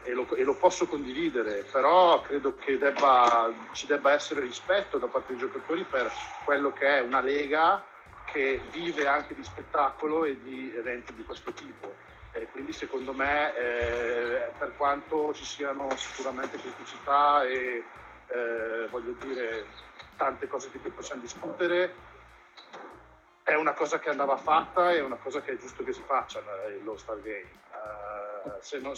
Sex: male